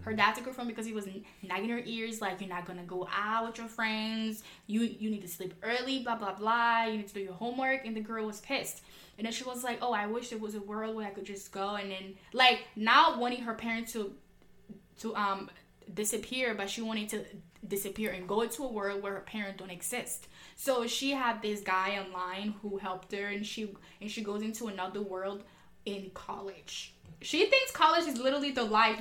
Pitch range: 205-245 Hz